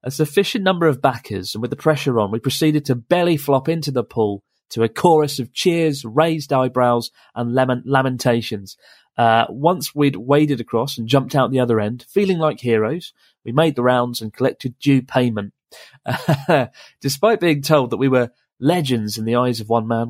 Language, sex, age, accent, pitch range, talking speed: English, male, 30-49, British, 120-150 Hz, 190 wpm